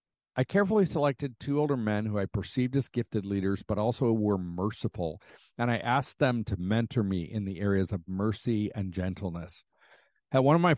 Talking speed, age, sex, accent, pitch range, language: 190 wpm, 50-69, male, American, 105-145 Hz, English